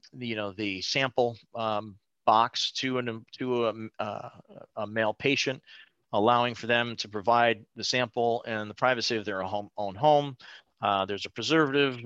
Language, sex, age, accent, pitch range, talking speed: English, male, 40-59, American, 110-130 Hz, 150 wpm